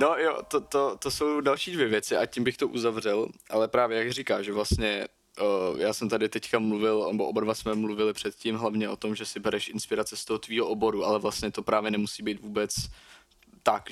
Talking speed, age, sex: 220 wpm, 20-39, male